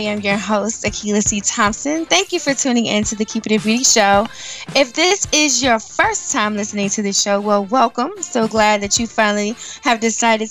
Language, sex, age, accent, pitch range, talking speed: English, female, 20-39, American, 195-240 Hz, 215 wpm